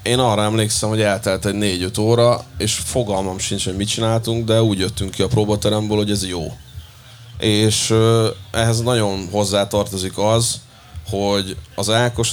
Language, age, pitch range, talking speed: Hungarian, 30-49, 100-115 Hz, 155 wpm